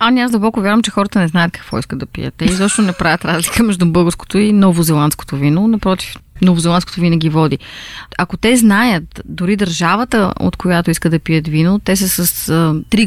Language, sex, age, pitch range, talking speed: Bulgarian, female, 30-49, 160-205 Hz, 200 wpm